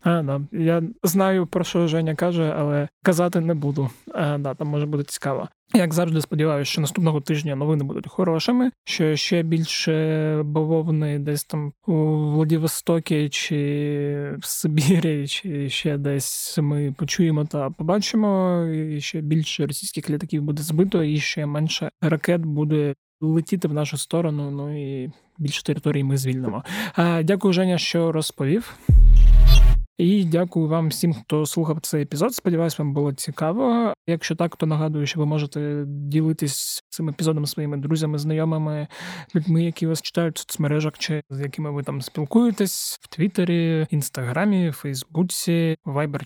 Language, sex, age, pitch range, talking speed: Ukrainian, male, 20-39, 150-175 Hz, 150 wpm